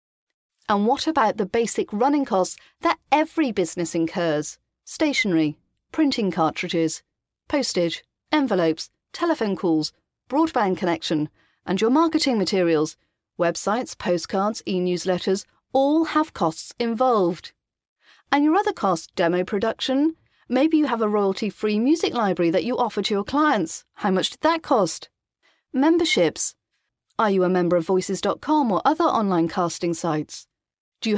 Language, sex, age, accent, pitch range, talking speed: English, female, 40-59, British, 180-275 Hz, 130 wpm